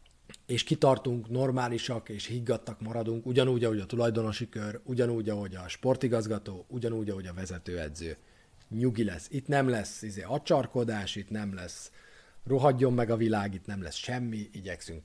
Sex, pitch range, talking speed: male, 100-125 Hz, 150 wpm